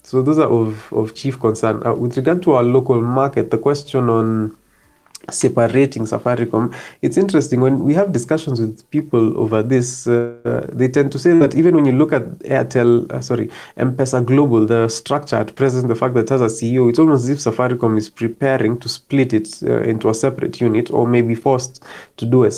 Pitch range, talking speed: 115-135 Hz, 200 wpm